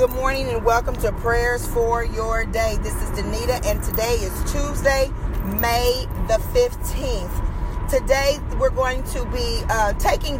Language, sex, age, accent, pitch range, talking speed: English, female, 40-59, American, 245-290 Hz, 150 wpm